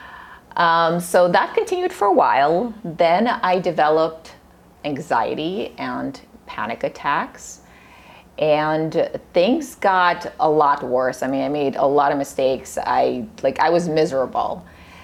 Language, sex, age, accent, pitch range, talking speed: English, female, 30-49, American, 140-195 Hz, 130 wpm